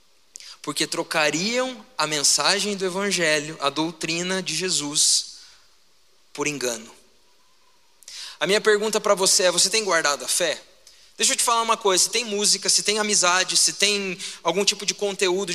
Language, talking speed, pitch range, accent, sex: Portuguese, 160 wpm, 170-215 Hz, Brazilian, male